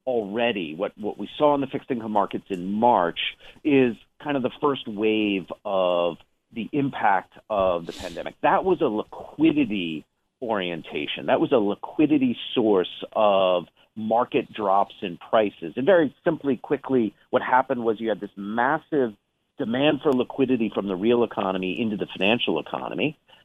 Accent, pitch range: American, 110-145 Hz